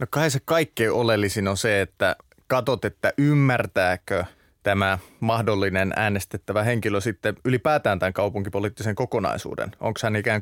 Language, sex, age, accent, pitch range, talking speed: Finnish, male, 30-49, native, 100-115 Hz, 130 wpm